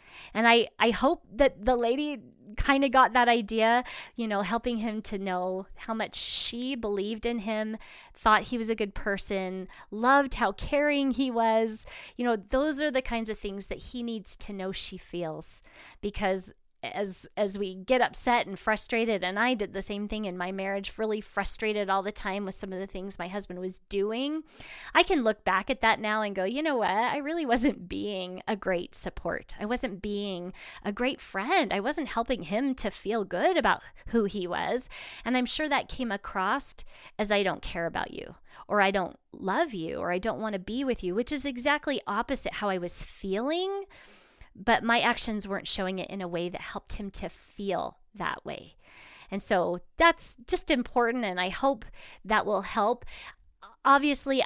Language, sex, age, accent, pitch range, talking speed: English, female, 20-39, American, 200-250 Hz, 195 wpm